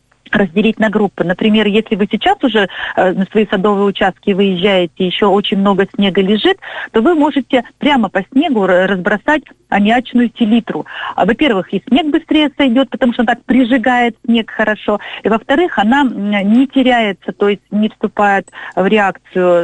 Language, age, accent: Russian, 40-59, native